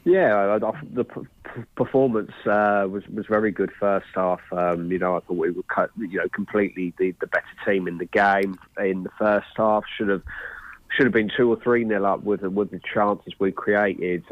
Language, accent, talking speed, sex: English, British, 220 wpm, male